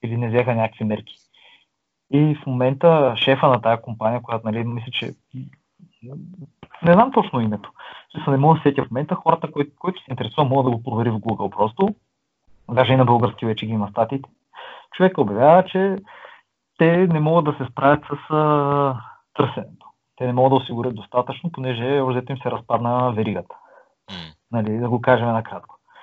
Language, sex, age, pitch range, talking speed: Bulgarian, male, 30-49, 120-155 Hz, 180 wpm